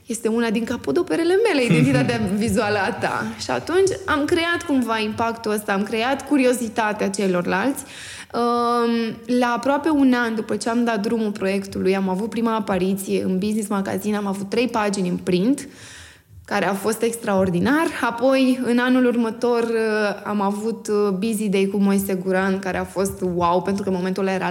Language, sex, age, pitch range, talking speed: Romanian, female, 20-39, 205-275 Hz, 160 wpm